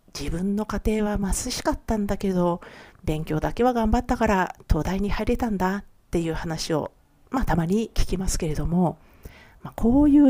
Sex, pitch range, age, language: female, 165-230 Hz, 50-69, Japanese